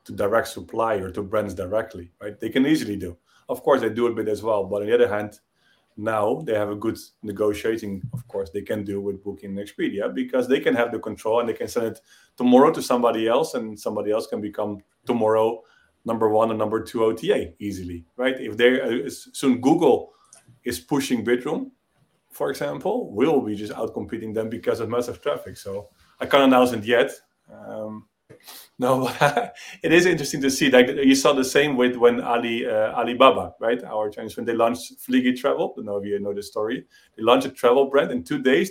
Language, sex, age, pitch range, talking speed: English, male, 30-49, 105-135 Hz, 210 wpm